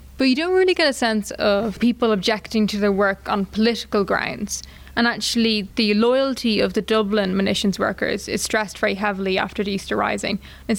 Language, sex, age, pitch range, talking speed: English, female, 20-39, 195-220 Hz, 190 wpm